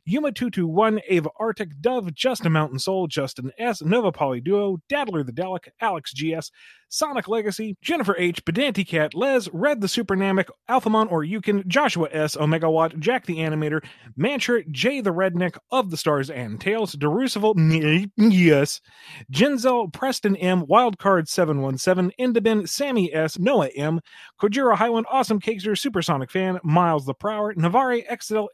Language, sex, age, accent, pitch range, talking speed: English, male, 30-49, American, 165-240 Hz, 140 wpm